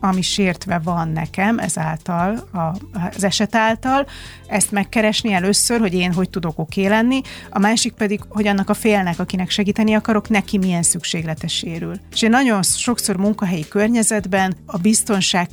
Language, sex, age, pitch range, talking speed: Hungarian, female, 30-49, 175-205 Hz, 150 wpm